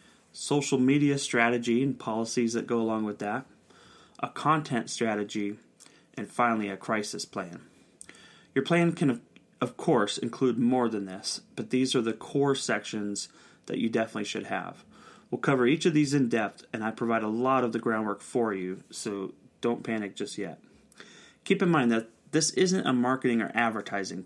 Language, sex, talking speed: English, male, 175 wpm